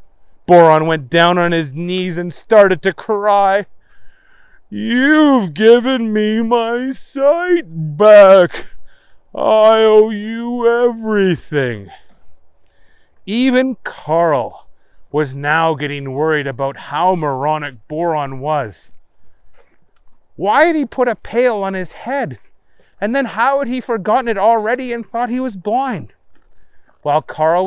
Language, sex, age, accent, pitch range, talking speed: English, male, 30-49, American, 150-215 Hz, 120 wpm